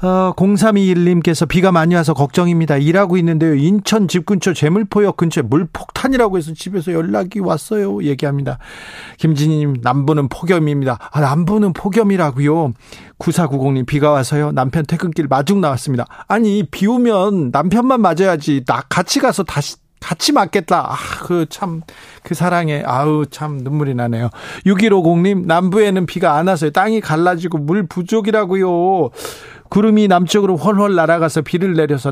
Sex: male